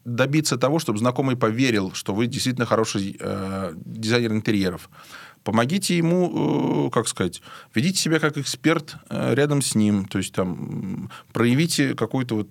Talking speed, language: 150 wpm, Russian